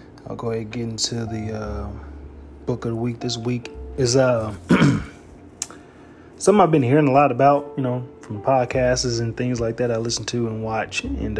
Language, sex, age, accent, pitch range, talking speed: English, male, 20-39, American, 110-130 Hz, 195 wpm